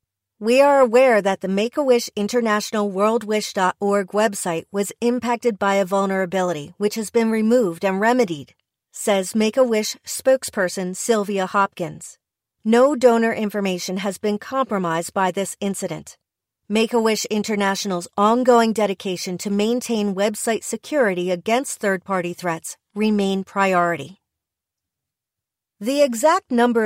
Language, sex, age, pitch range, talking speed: English, female, 40-59, 185-235 Hz, 110 wpm